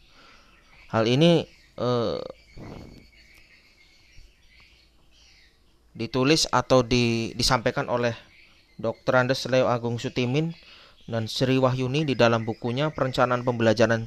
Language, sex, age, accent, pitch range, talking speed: Indonesian, male, 30-49, native, 115-145 Hz, 90 wpm